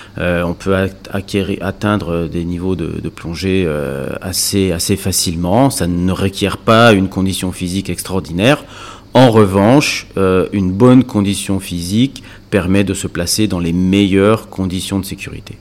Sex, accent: male, French